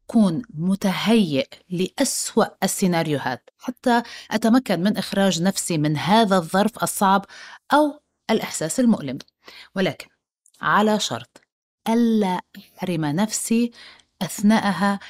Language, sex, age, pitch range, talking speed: Arabic, female, 30-49, 185-240 Hz, 90 wpm